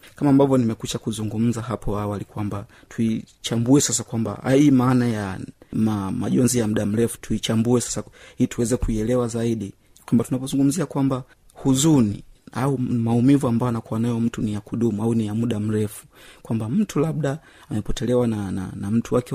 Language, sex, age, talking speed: Swahili, male, 30-49, 160 wpm